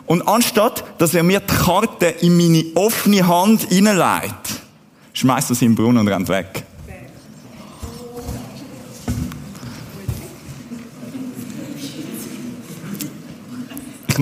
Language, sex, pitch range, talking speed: German, male, 130-180 Hz, 90 wpm